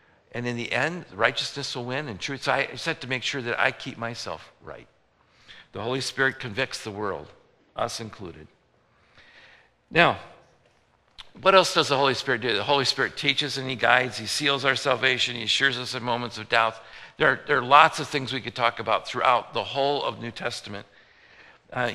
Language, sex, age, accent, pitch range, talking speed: English, male, 50-69, American, 120-145 Hz, 190 wpm